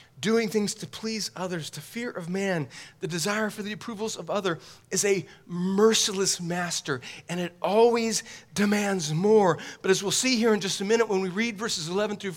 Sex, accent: male, American